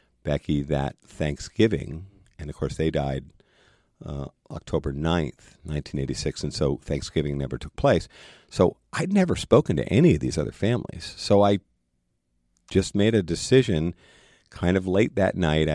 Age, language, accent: 50-69, English, American